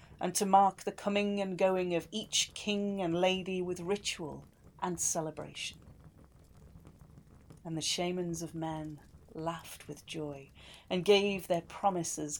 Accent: British